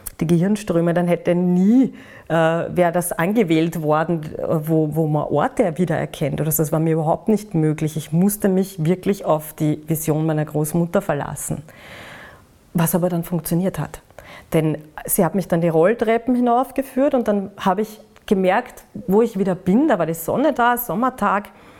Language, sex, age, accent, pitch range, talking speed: German, female, 40-59, German, 165-205 Hz, 160 wpm